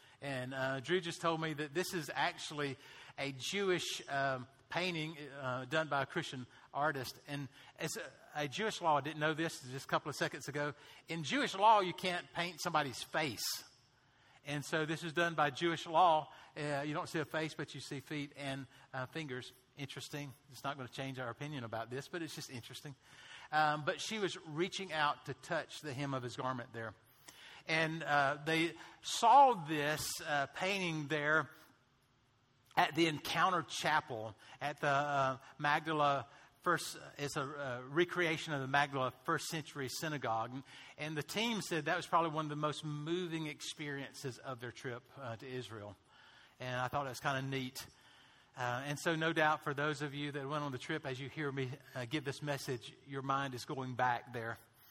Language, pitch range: English, 130-160 Hz